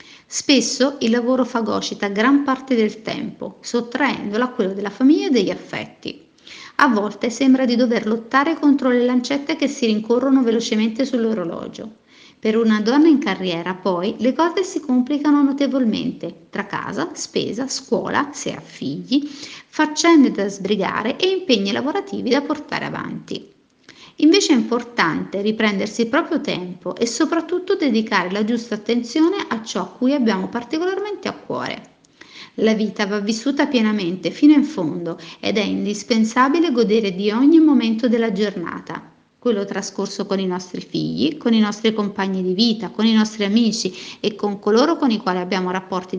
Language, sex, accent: Italian, female, native